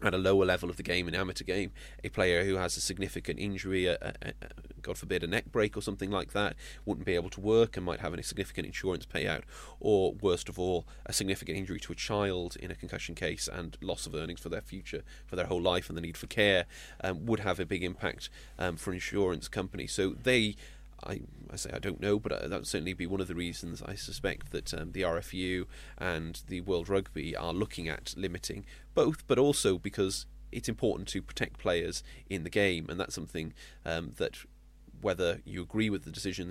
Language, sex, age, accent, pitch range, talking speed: English, male, 30-49, British, 85-100 Hz, 220 wpm